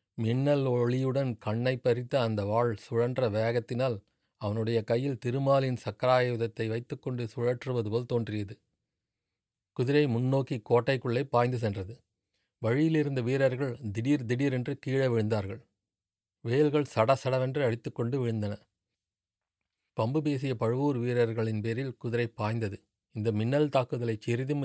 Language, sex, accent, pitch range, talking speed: Tamil, male, native, 110-130 Hz, 105 wpm